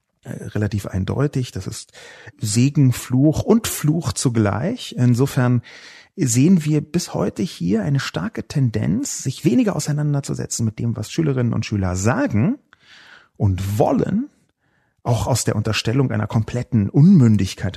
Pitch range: 115-150 Hz